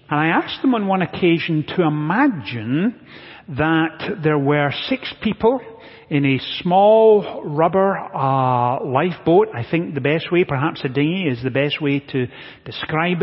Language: English